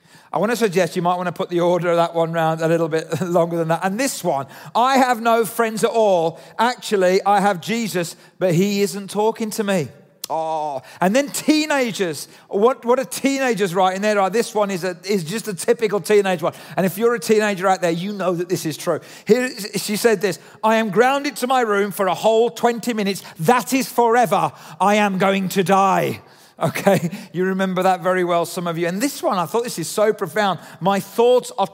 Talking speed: 215 wpm